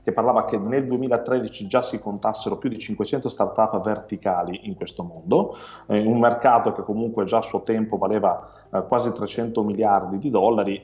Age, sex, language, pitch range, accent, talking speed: 30-49, male, Italian, 95-110 Hz, native, 170 wpm